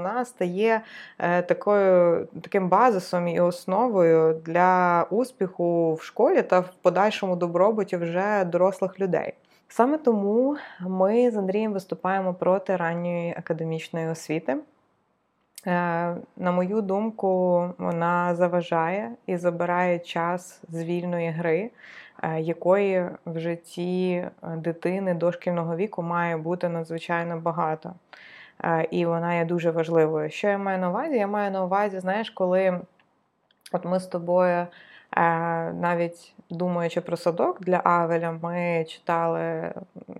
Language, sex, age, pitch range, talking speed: Ukrainian, female, 20-39, 170-190 Hz, 115 wpm